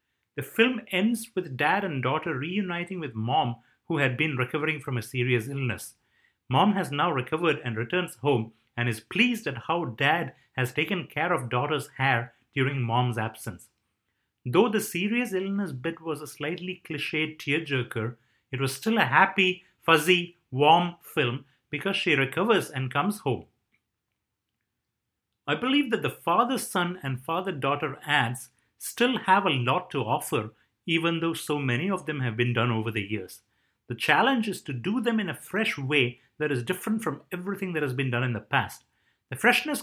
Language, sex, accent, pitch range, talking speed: English, male, Indian, 125-185 Hz, 170 wpm